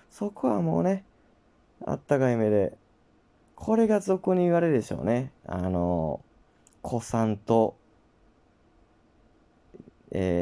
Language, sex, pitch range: Japanese, male, 90-135 Hz